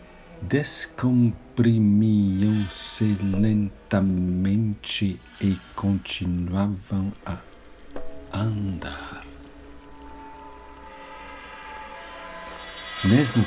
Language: Portuguese